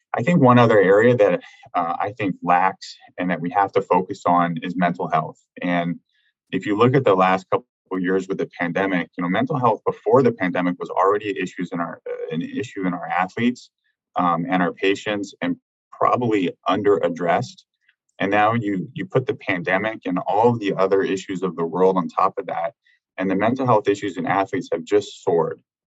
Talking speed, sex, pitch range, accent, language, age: 205 wpm, male, 90-120 Hz, American, English, 20-39